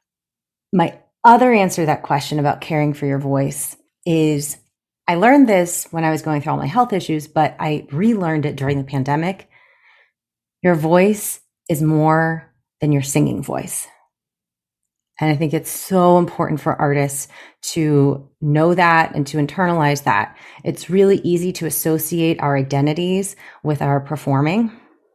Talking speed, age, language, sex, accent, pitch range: 155 wpm, 30-49, English, female, American, 145-175 Hz